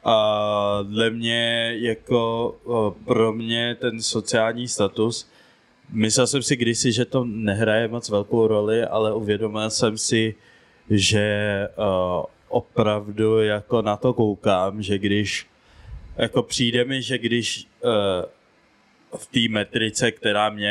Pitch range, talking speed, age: 100-110 Hz, 120 wpm, 20-39